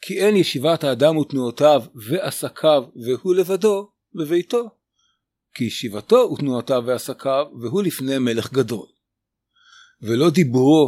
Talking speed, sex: 105 wpm, male